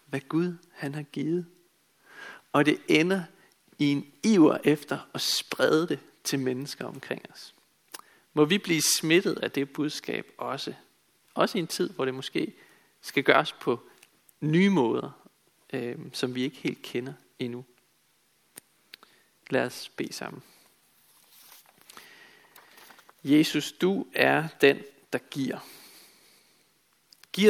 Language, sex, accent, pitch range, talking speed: Danish, male, native, 140-175 Hz, 125 wpm